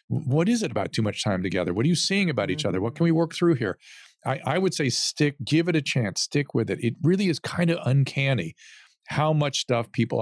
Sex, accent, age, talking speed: male, American, 50-69, 255 wpm